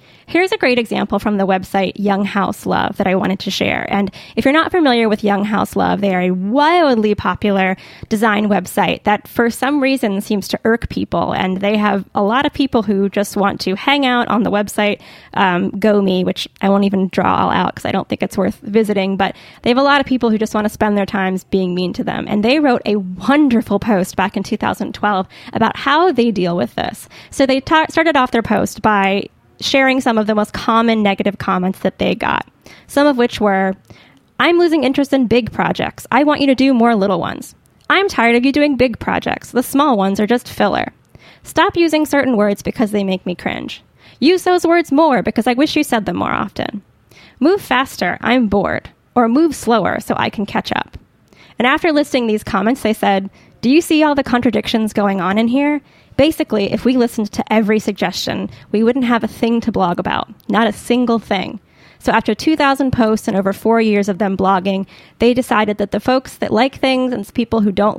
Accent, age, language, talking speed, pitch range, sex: American, 10-29, English, 215 wpm, 200-255 Hz, female